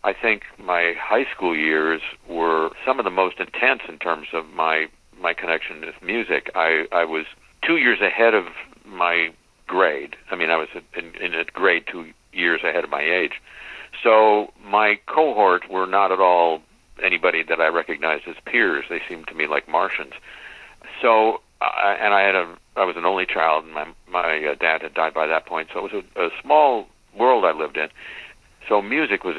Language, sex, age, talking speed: English, male, 60-79, 195 wpm